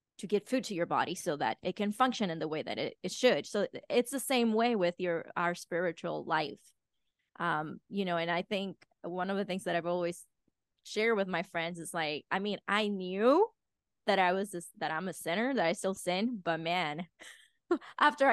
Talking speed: 215 wpm